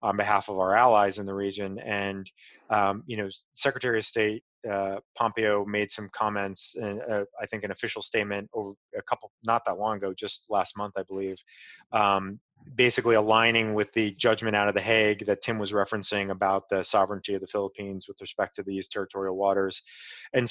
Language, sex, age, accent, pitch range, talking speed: English, male, 30-49, American, 100-115 Hz, 195 wpm